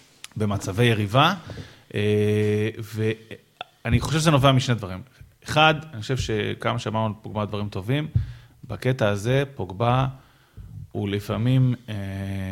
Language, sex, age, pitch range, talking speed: Hebrew, male, 30-49, 110-140 Hz, 100 wpm